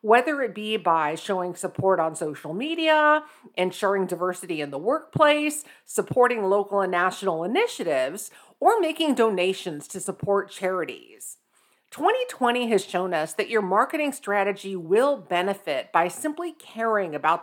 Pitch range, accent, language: 180-265 Hz, American, English